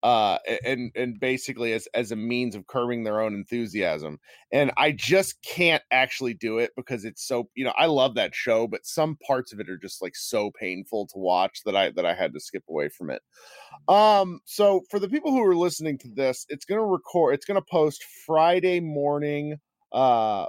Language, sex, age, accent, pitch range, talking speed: English, male, 30-49, American, 110-150 Hz, 215 wpm